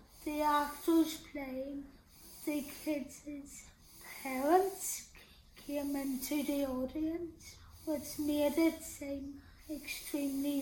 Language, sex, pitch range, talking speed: English, female, 275-310 Hz, 85 wpm